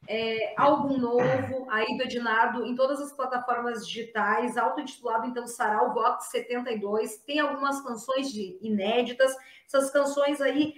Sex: female